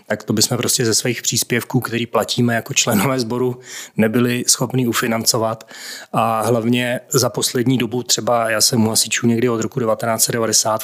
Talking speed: 160 wpm